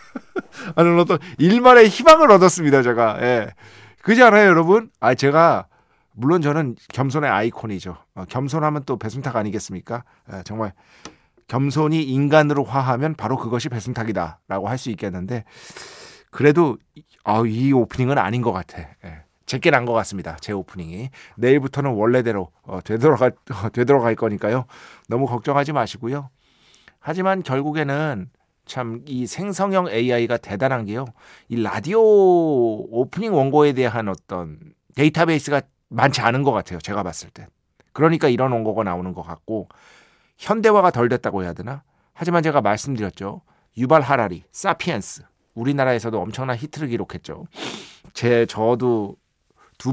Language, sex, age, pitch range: Korean, male, 40-59, 105-150 Hz